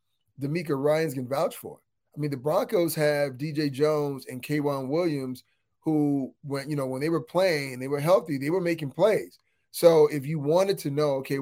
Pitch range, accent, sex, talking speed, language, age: 145-190 Hz, American, male, 200 wpm, English, 30-49